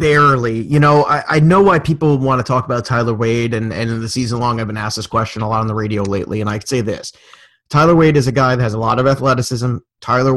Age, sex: 30-49, male